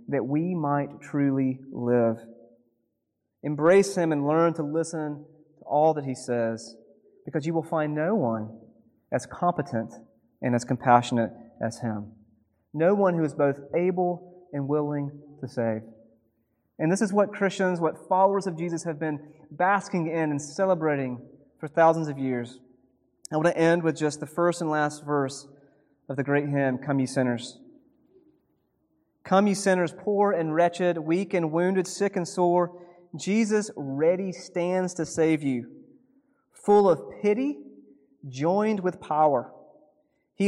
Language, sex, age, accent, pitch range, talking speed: English, male, 30-49, American, 135-180 Hz, 150 wpm